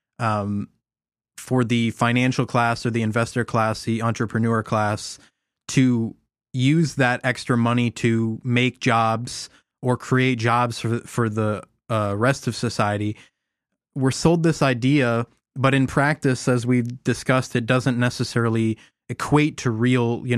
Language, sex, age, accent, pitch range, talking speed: English, male, 20-39, American, 110-125 Hz, 140 wpm